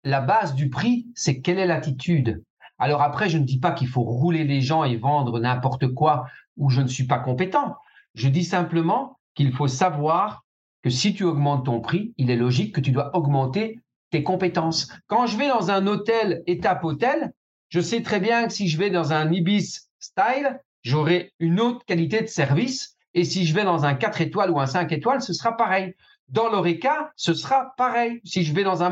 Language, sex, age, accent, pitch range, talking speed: French, male, 50-69, French, 145-230 Hz, 210 wpm